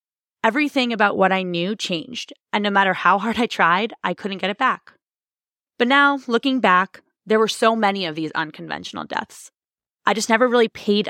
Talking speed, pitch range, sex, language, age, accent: 190 wpm, 185-230 Hz, female, English, 20-39, American